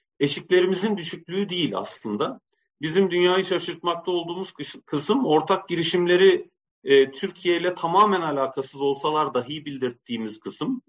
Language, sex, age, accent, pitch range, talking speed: Turkish, male, 40-59, native, 130-180 Hz, 110 wpm